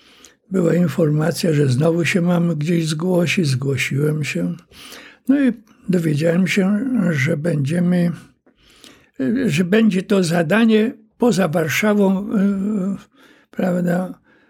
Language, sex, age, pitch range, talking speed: Polish, male, 60-79, 160-215 Hz, 95 wpm